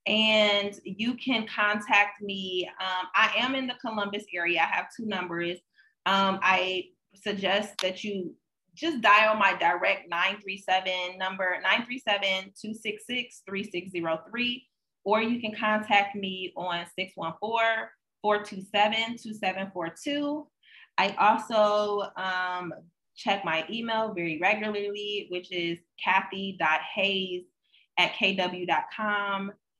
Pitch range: 180-210 Hz